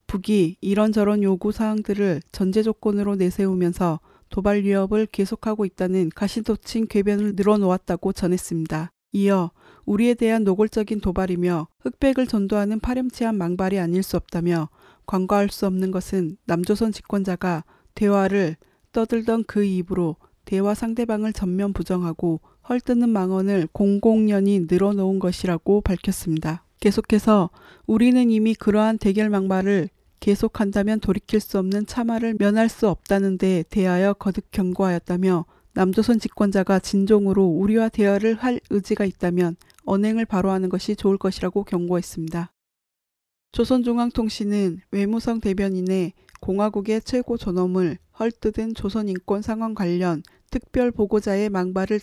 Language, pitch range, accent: Korean, 185-215 Hz, native